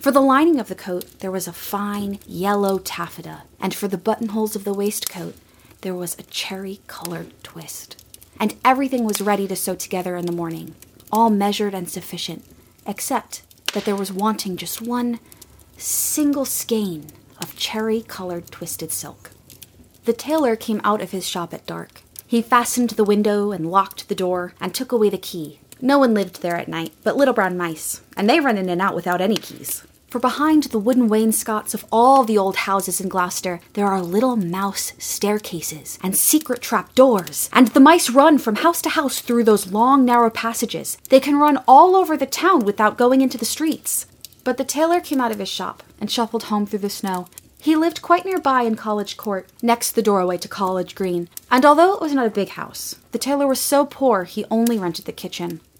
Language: English